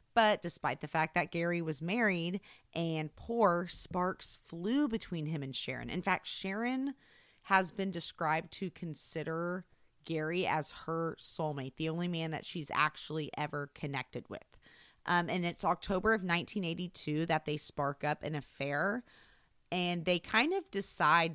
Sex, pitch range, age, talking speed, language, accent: female, 150-190 Hz, 30-49, 150 wpm, English, American